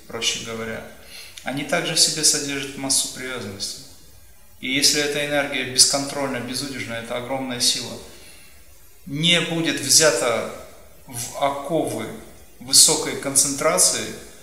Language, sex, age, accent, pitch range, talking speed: Russian, male, 30-49, native, 90-140 Hz, 105 wpm